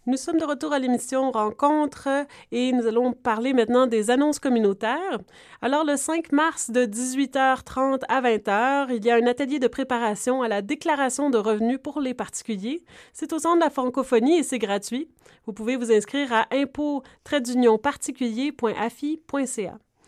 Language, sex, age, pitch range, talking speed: French, female, 30-49, 225-290 Hz, 160 wpm